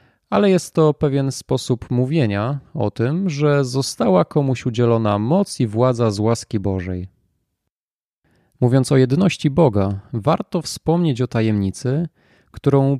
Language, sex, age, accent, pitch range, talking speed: Polish, male, 30-49, native, 110-155 Hz, 125 wpm